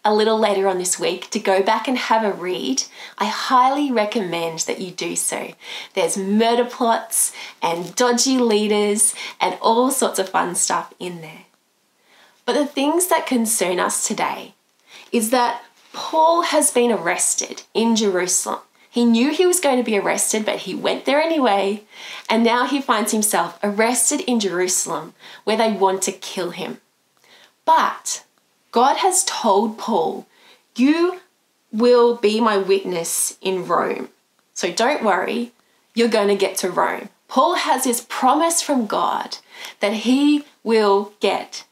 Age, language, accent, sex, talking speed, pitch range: 20-39, English, Australian, female, 150 wpm, 200-265 Hz